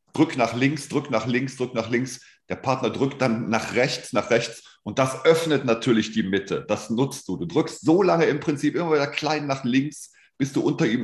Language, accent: German, German